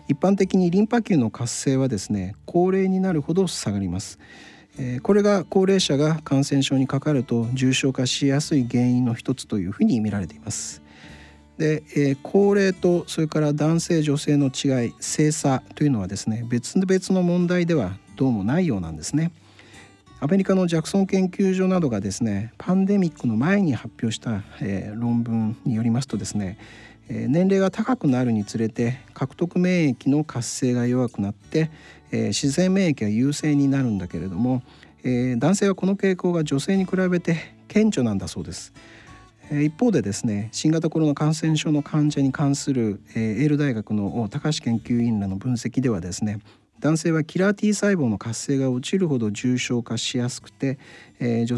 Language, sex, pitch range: Japanese, male, 115-165 Hz